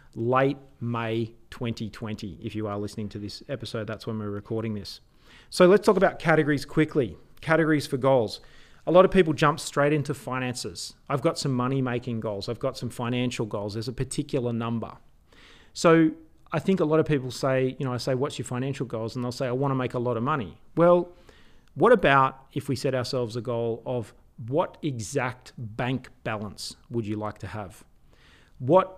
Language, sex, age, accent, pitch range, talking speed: English, male, 40-59, Australian, 115-145 Hz, 190 wpm